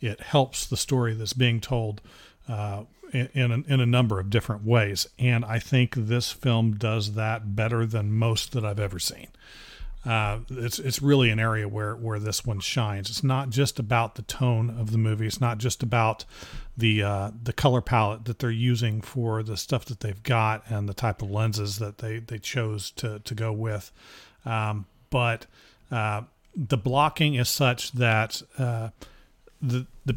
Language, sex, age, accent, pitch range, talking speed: English, male, 40-59, American, 110-130 Hz, 185 wpm